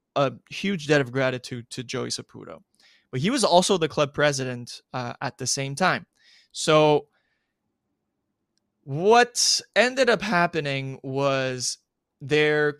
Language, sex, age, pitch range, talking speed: English, male, 20-39, 130-155 Hz, 125 wpm